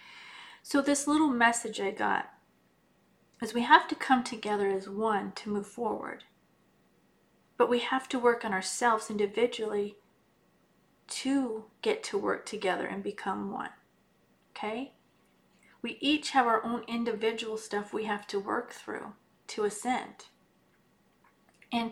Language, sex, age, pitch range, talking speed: English, female, 40-59, 210-255 Hz, 135 wpm